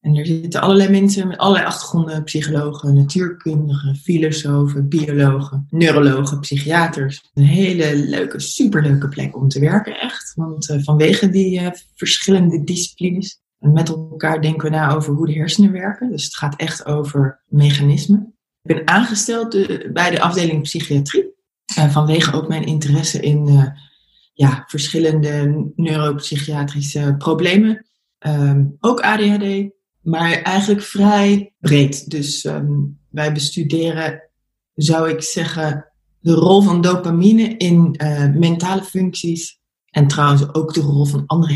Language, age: Dutch, 20-39